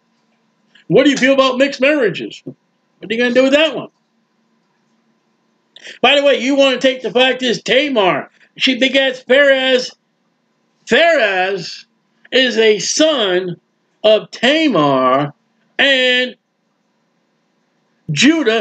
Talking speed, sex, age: 125 wpm, male, 50-69